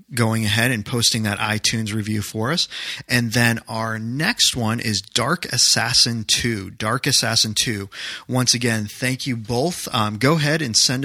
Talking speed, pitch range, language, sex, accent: 170 wpm, 110-130 Hz, English, male, American